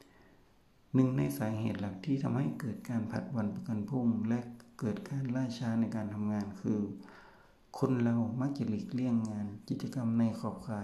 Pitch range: 105-125 Hz